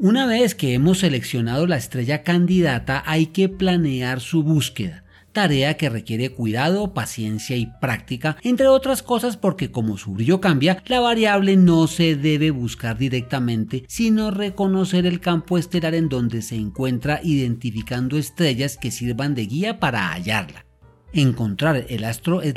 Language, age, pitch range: Spanish, 40-59, 120-180 Hz